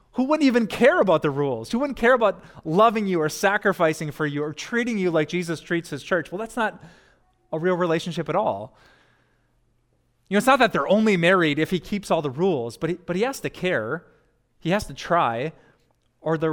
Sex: male